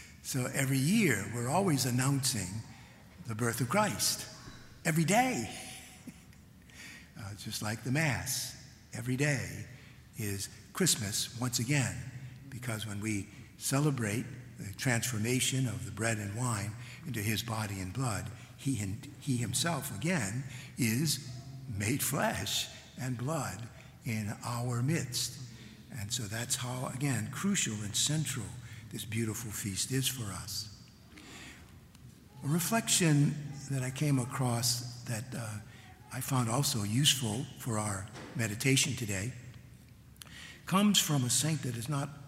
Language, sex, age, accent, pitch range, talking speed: English, male, 60-79, American, 110-135 Hz, 125 wpm